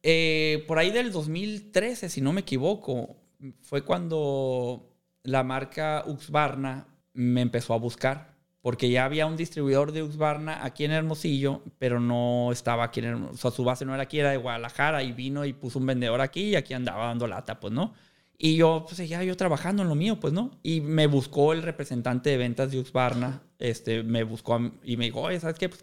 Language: English